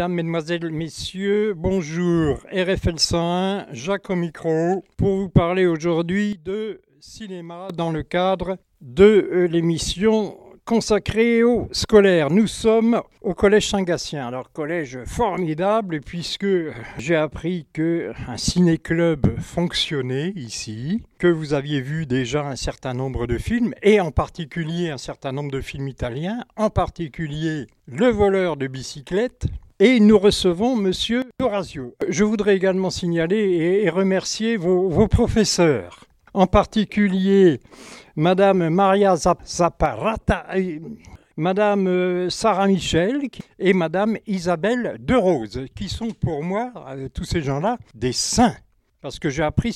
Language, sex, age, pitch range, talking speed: French, male, 60-79, 155-200 Hz, 125 wpm